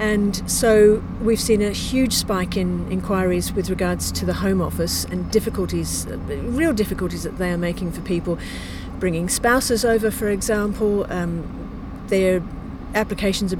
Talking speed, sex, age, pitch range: 150 wpm, female, 50-69, 180-225 Hz